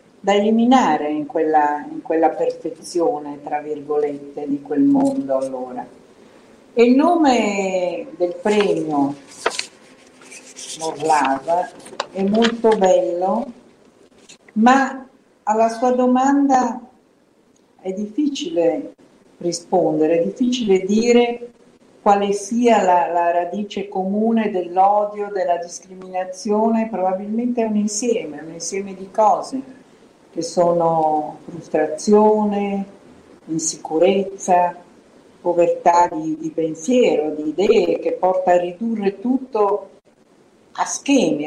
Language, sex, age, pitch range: Italian, female, 50-69, 165-240 Hz